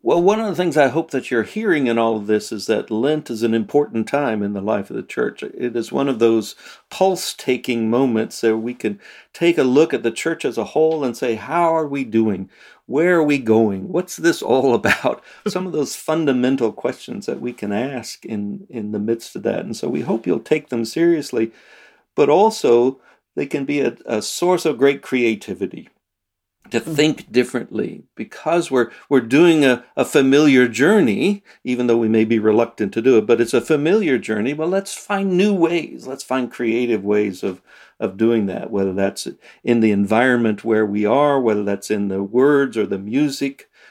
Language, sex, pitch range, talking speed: English, male, 110-155 Hz, 200 wpm